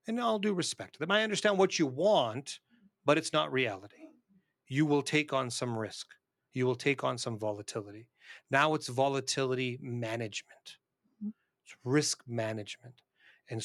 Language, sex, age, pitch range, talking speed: English, male, 40-59, 115-140 Hz, 155 wpm